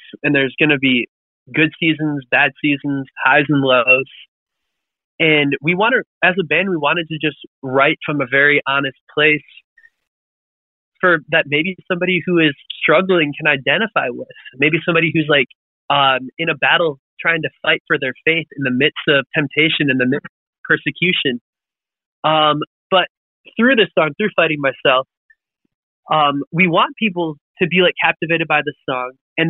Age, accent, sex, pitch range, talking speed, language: 20-39, American, male, 145-175 Hz, 165 wpm, English